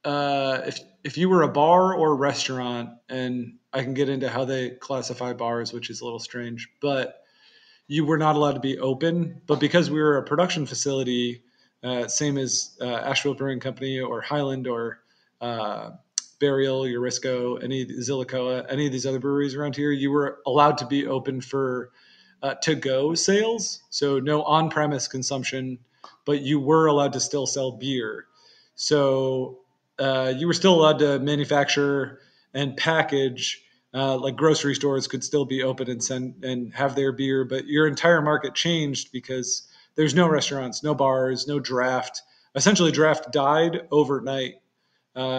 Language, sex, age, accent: English, male, 40-59, American